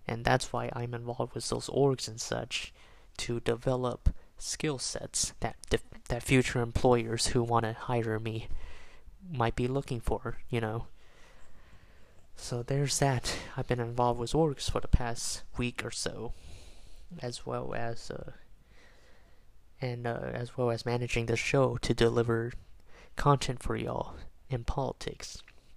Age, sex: 20-39, male